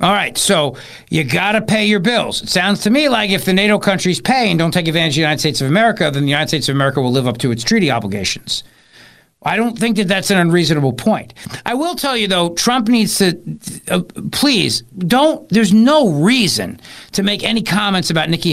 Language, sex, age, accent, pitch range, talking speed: English, male, 50-69, American, 155-215 Hz, 220 wpm